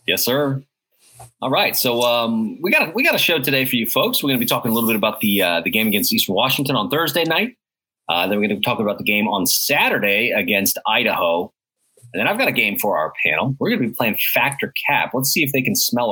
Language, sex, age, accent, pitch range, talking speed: English, male, 30-49, American, 115-150 Hz, 265 wpm